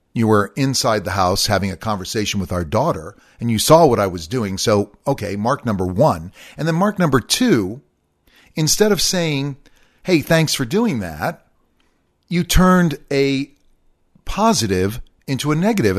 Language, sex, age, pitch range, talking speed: English, male, 40-59, 105-165 Hz, 160 wpm